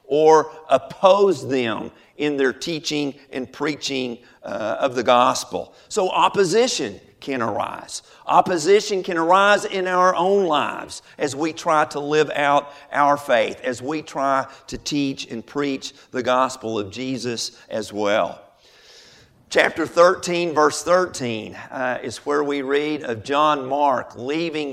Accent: American